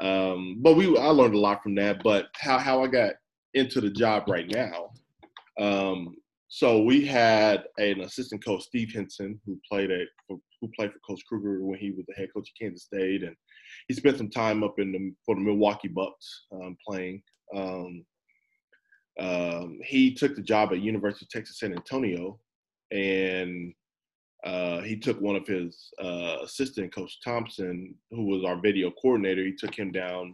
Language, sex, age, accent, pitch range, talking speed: English, male, 20-39, American, 95-105 Hz, 180 wpm